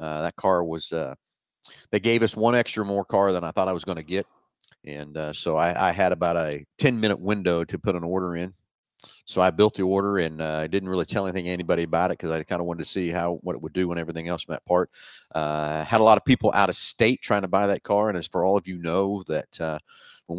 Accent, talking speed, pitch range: American, 275 wpm, 85-100 Hz